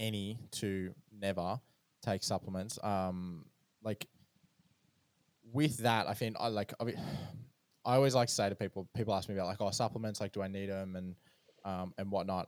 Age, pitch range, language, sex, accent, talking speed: 20-39, 85-105 Hz, English, male, Australian, 185 wpm